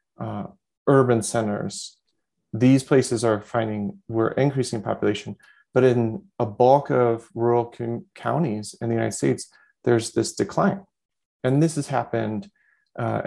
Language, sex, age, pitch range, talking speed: English, male, 30-49, 110-125 Hz, 135 wpm